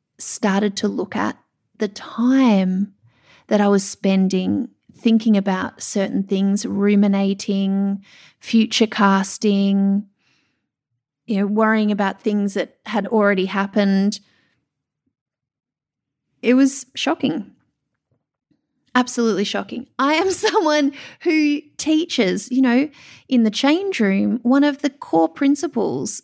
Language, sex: English, female